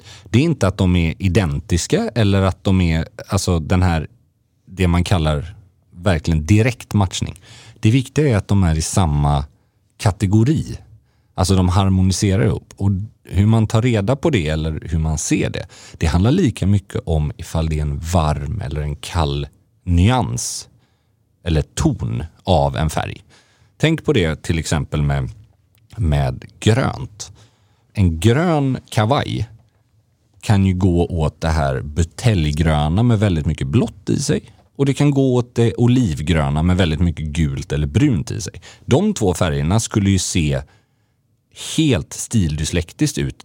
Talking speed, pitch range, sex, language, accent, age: 155 wpm, 85-115 Hz, male, English, Swedish, 40-59